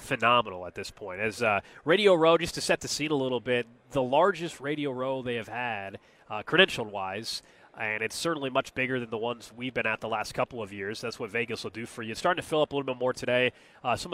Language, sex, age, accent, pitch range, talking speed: English, male, 30-49, American, 115-155 Hz, 260 wpm